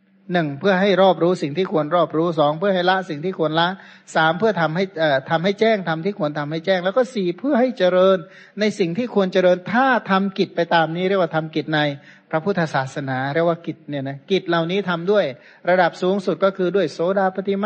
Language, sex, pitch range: Thai, male, 160-195 Hz